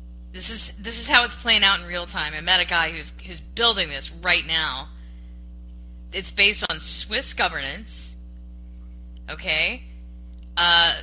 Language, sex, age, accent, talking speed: English, female, 20-39, American, 150 wpm